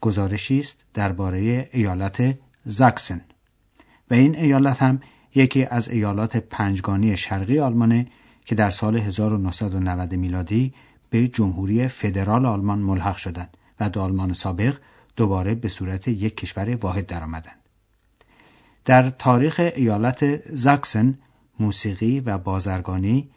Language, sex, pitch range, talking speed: Persian, male, 95-125 Hz, 115 wpm